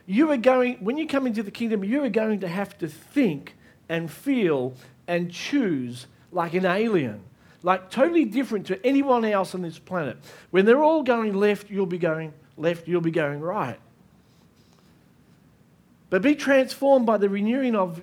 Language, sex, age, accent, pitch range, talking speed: English, male, 50-69, Australian, 175-240 Hz, 175 wpm